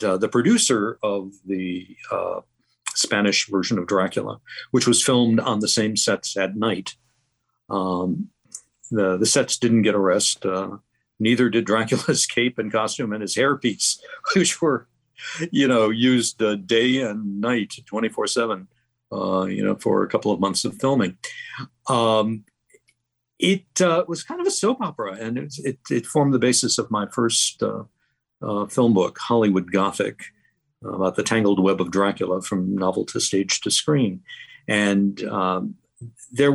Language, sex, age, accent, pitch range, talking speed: English, male, 60-79, American, 100-125 Hz, 165 wpm